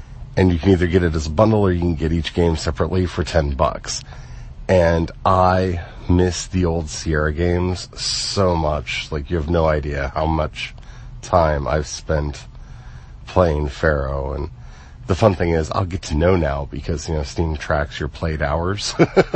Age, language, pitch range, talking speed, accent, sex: 40-59, English, 80-100 Hz, 180 wpm, American, male